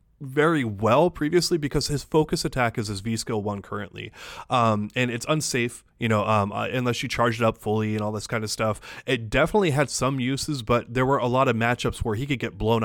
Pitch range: 110-135 Hz